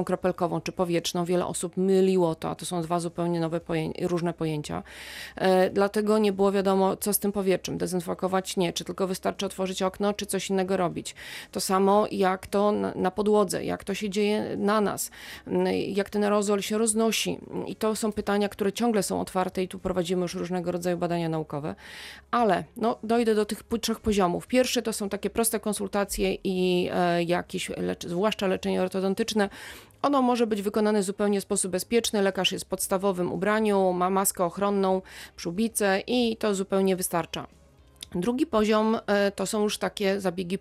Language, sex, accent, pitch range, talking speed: Polish, female, native, 180-210 Hz, 175 wpm